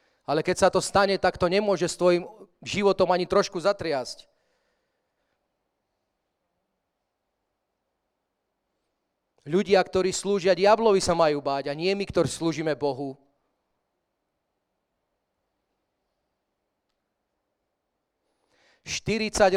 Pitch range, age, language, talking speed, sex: 150-185 Hz, 40-59, English, 85 wpm, male